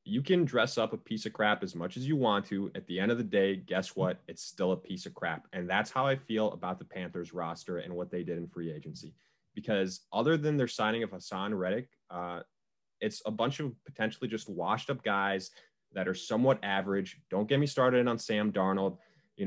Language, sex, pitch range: English, male, 95-130 Hz